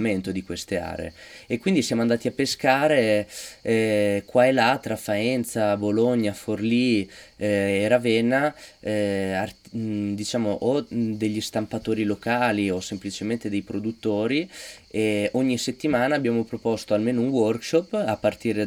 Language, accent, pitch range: Italian, native, 100-110 Hz